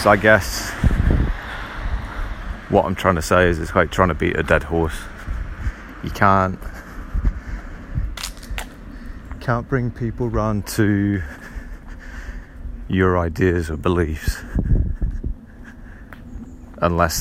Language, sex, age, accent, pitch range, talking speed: English, male, 30-49, British, 80-105 Hz, 100 wpm